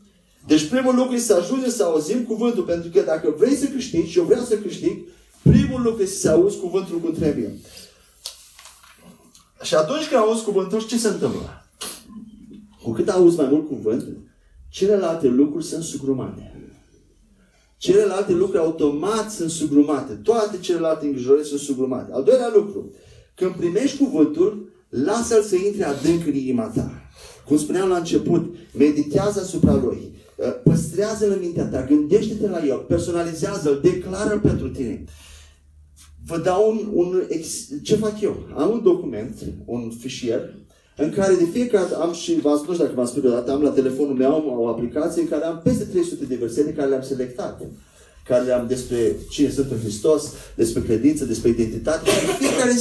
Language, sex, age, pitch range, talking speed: Romanian, male, 30-49, 140-225 Hz, 165 wpm